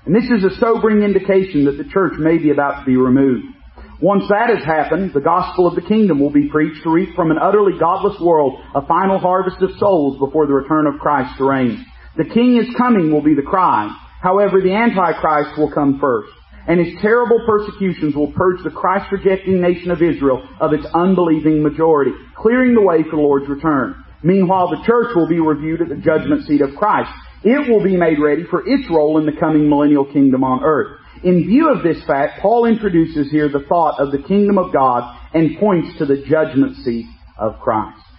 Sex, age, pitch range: male, 40-59, 150-200 Hz